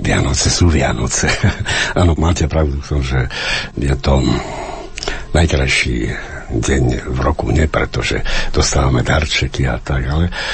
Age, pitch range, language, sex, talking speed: 60-79, 65-80 Hz, Slovak, male, 115 wpm